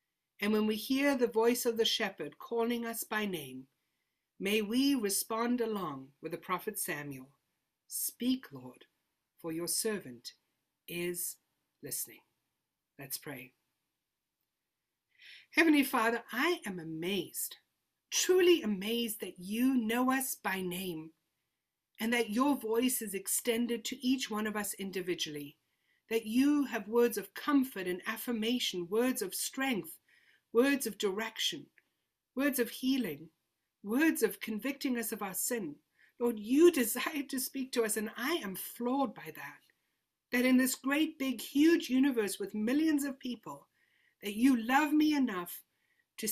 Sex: female